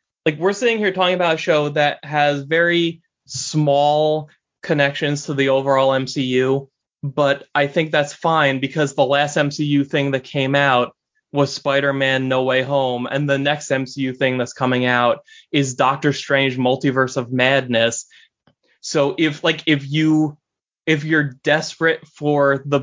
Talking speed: 155 wpm